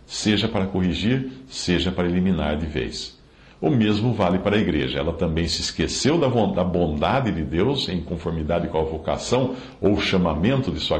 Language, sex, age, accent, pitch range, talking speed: Portuguese, male, 60-79, Brazilian, 80-110 Hz, 170 wpm